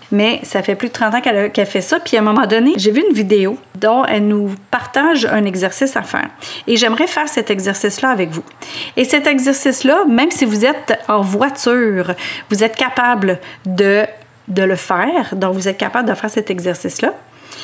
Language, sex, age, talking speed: French, female, 30-49, 195 wpm